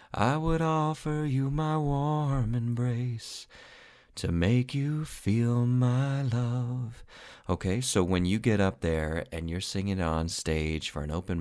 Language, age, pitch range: English, 30-49, 80-100 Hz